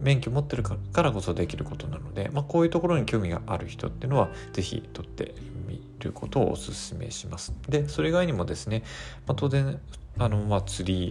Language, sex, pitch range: Japanese, male, 95-130 Hz